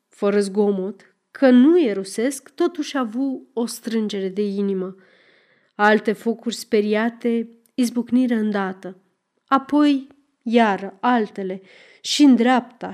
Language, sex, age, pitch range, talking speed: Romanian, female, 30-49, 205-265 Hz, 105 wpm